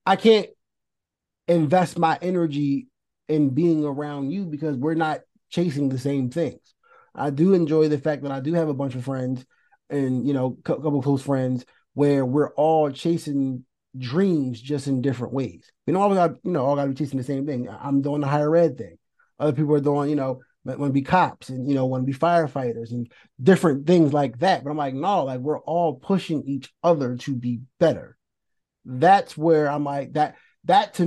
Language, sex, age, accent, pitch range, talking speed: English, male, 30-49, American, 135-175 Hz, 200 wpm